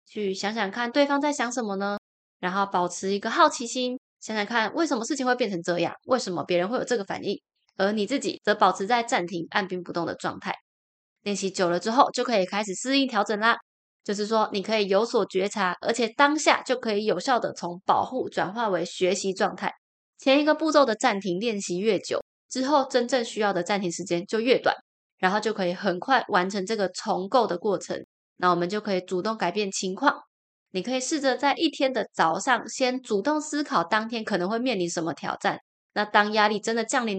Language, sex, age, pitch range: Chinese, female, 20-39, 190-255 Hz